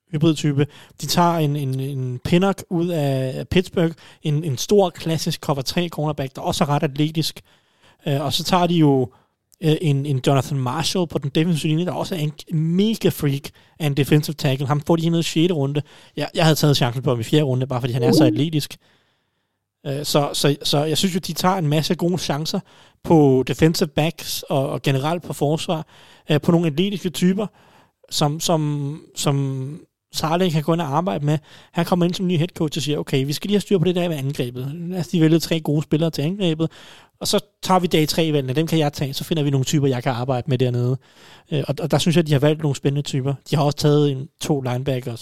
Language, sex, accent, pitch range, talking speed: Danish, male, native, 140-165 Hz, 220 wpm